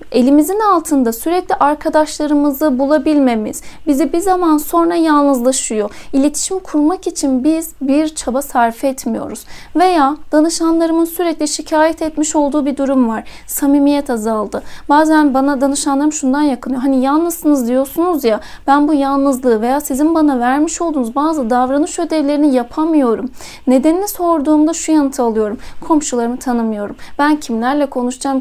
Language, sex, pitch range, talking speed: Turkish, female, 255-310 Hz, 125 wpm